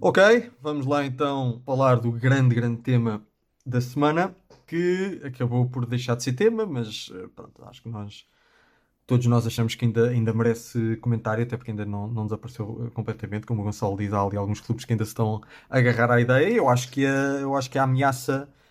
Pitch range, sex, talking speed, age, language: 115-145 Hz, male, 200 wpm, 20-39, Portuguese